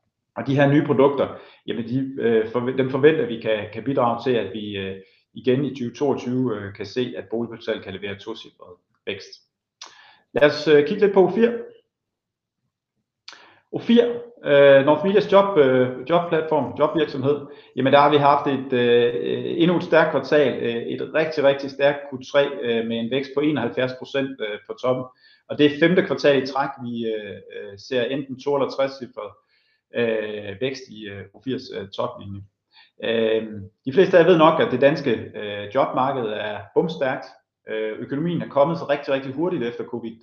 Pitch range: 115-150 Hz